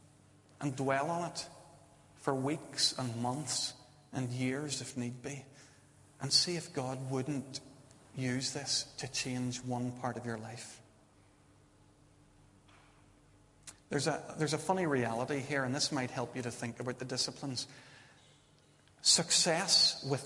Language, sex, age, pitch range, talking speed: English, male, 40-59, 125-155 Hz, 135 wpm